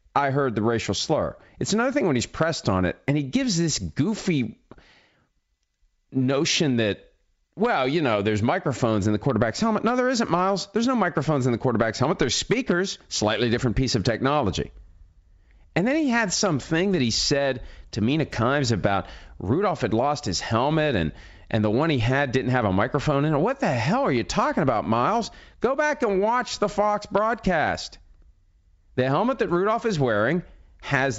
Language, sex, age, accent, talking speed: English, male, 40-59, American, 190 wpm